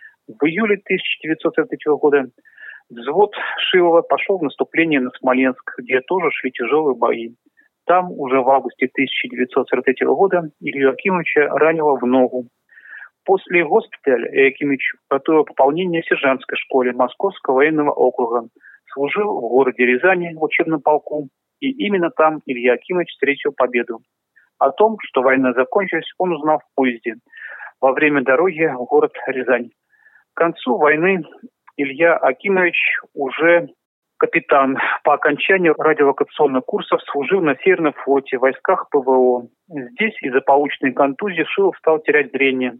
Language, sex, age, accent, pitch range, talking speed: Russian, male, 40-59, native, 130-180 Hz, 130 wpm